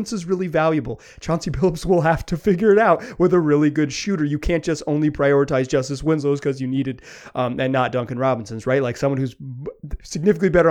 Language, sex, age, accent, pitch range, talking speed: English, male, 30-49, American, 125-160 Hz, 215 wpm